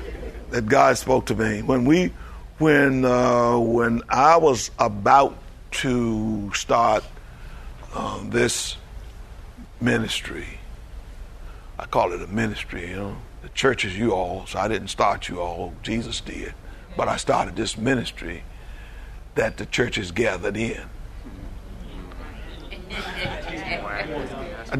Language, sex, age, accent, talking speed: English, male, 50-69, American, 120 wpm